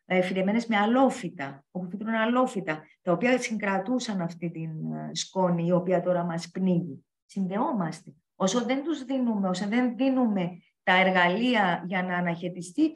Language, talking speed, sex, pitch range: Greek, 130 wpm, female, 180-250 Hz